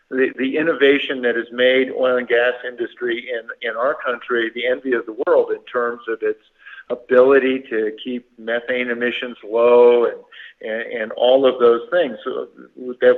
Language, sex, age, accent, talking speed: English, male, 50-69, American, 170 wpm